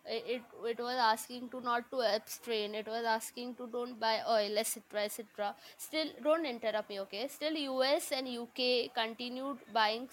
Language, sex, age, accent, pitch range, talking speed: English, female, 20-39, Indian, 225-290 Hz, 170 wpm